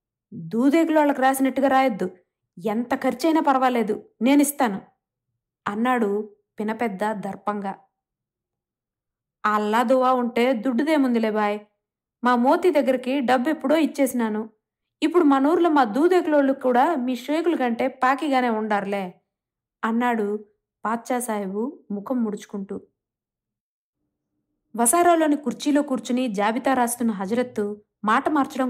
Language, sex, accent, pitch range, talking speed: Telugu, female, native, 220-285 Hz, 90 wpm